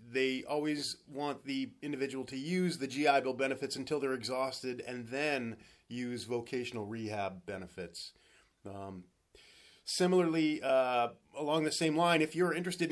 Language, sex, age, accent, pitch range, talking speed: English, male, 30-49, American, 120-145 Hz, 140 wpm